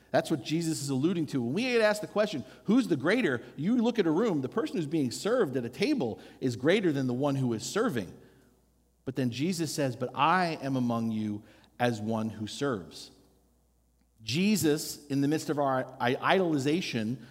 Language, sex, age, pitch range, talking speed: English, male, 50-69, 120-165 Hz, 195 wpm